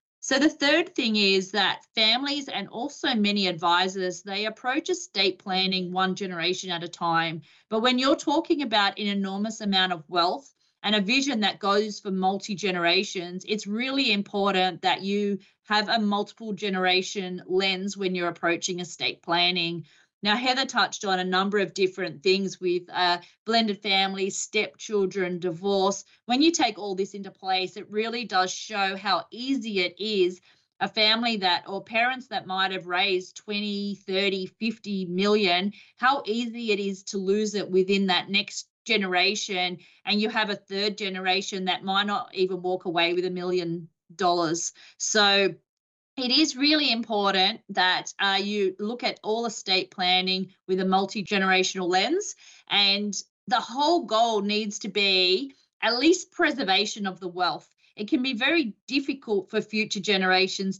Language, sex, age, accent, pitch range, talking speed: English, female, 30-49, Australian, 185-215 Hz, 160 wpm